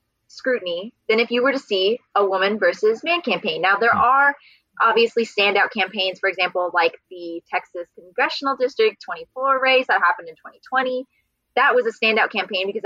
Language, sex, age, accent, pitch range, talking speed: English, female, 20-39, American, 195-255 Hz, 175 wpm